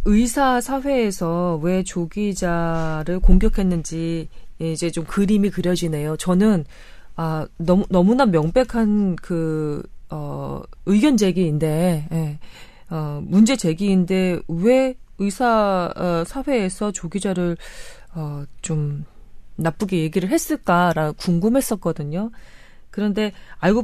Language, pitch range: Korean, 170-235 Hz